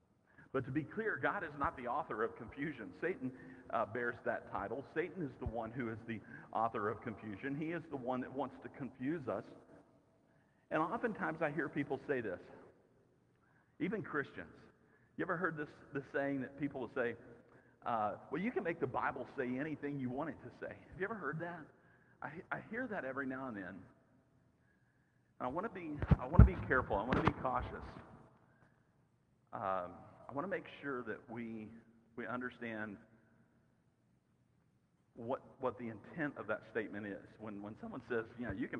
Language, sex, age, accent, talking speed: English, male, 50-69, American, 190 wpm